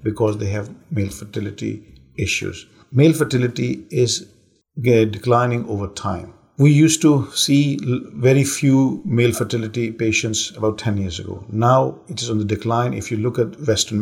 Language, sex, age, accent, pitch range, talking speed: English, male, 50-69, Indian, 105-125 Hz, 155 wpm